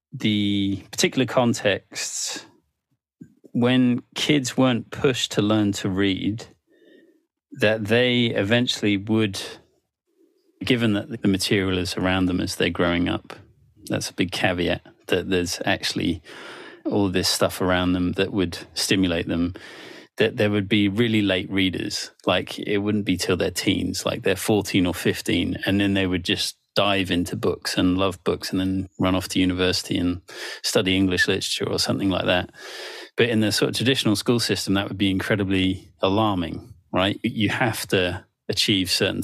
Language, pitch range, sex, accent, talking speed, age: English, 95-115 Hz, male, British, 160 wpm, 30-49